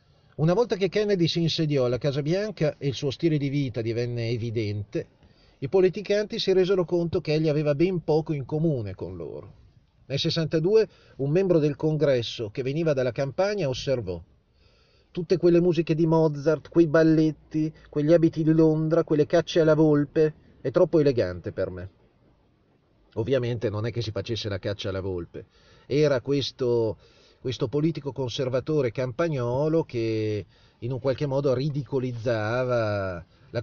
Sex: male